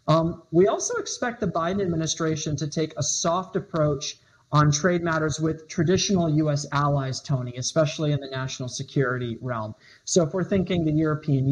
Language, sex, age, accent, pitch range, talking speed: English, male, 40-59, American, 145-180 Hz, 165 wpm